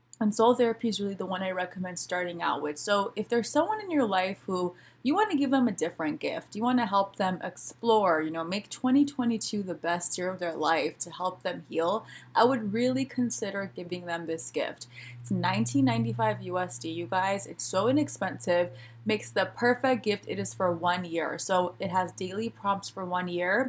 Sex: female